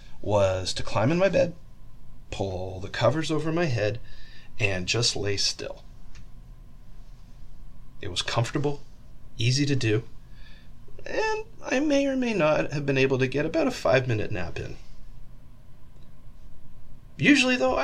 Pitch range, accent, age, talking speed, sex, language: 115-165 Hz, American, 30-49, 135 wpm, male, English